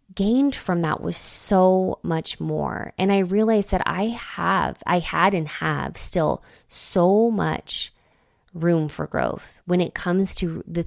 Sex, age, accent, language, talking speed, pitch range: female, 20-39, American, English, 155 wpm, 160-195 Hz